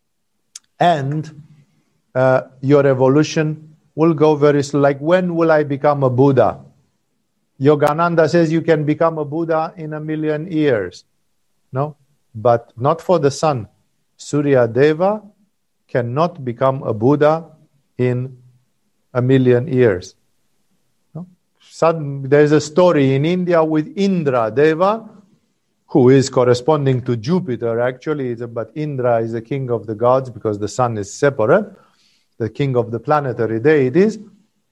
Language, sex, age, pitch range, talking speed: English, male, 50-69, 130-170 Hz, 135 wpm